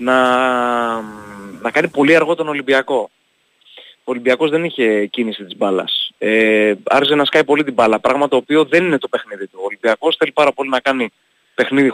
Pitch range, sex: 110-145 Hz, male